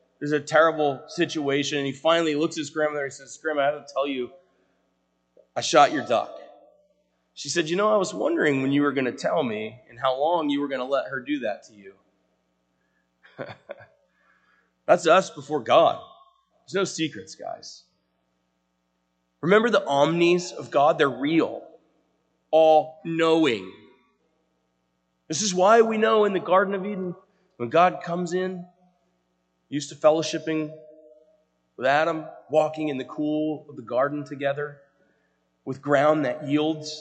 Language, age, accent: English, 30-49, American